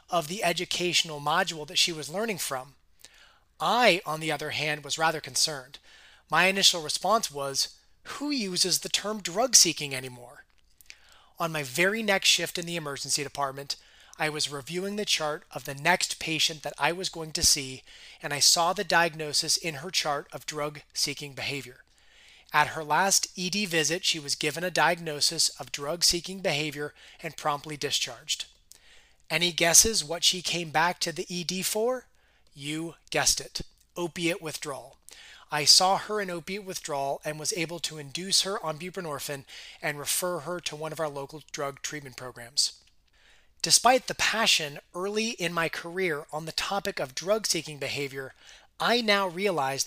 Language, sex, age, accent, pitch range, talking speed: English, male, 30-49, American, 145-180 Hz, 160 wpm